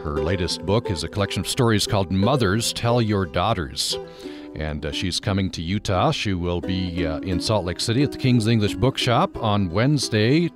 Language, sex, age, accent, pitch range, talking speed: English, male, 40-59, American, 85-110 Hz, 195 wpm